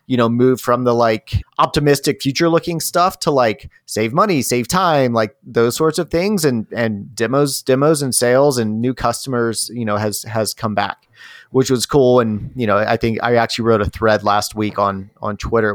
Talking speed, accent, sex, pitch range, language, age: 205 wpm, American, male, 110-135 Hz, English, 30-49